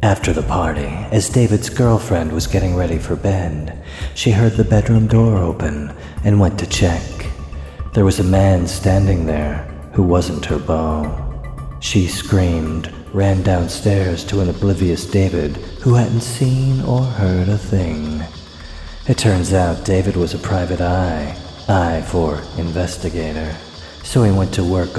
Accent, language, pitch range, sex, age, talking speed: American, English, 80-100 Hz, male, 40-59, 150 wpm